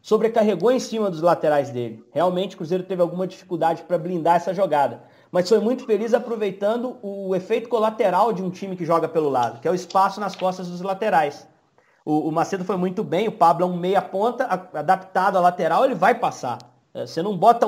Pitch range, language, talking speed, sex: 165-225 Hz, Portuguese, 200 wpm, male